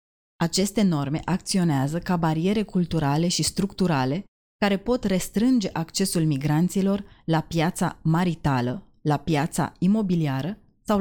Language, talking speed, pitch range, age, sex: Romanian, 110 wpm, 155-185 Hz, 20-39, female